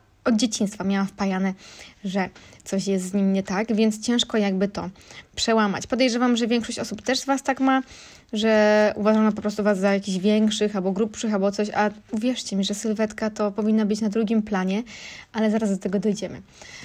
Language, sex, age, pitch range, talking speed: Polish, female, 20-39, 205-245 Hz, 190 wpm